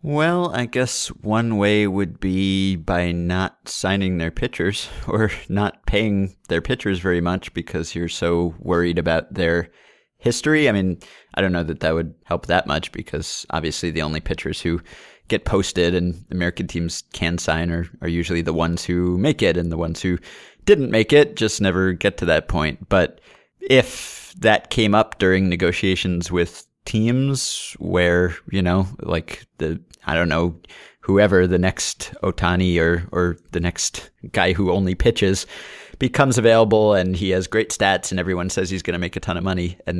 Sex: male